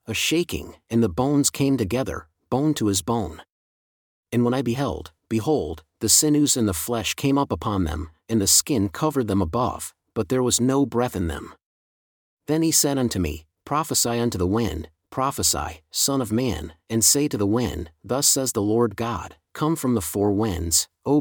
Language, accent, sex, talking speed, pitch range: English, American, male, 190 wpm, 95-130 Hz